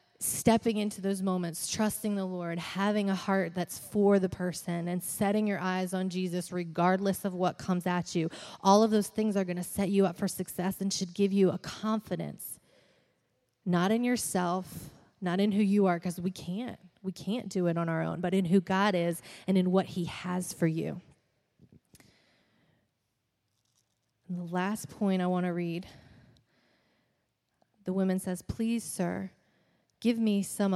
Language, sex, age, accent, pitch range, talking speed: English, female, 20-39, American, 175-200 Hz, 175 wpm